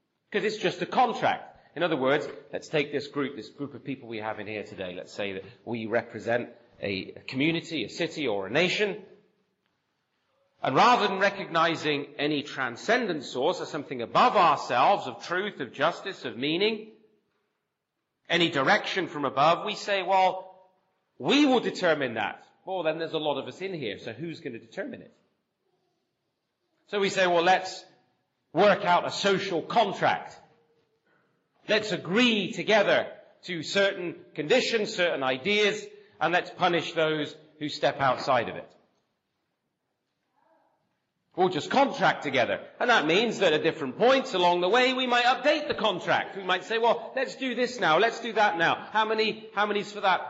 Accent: British